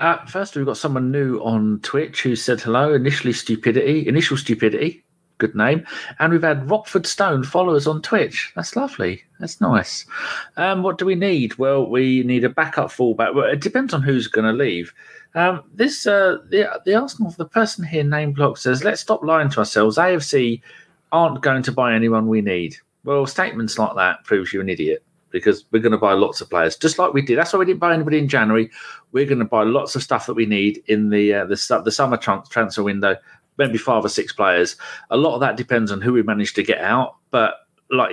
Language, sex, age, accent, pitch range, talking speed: English, male, 40-59, British, 110-160 Hz, 220 wpm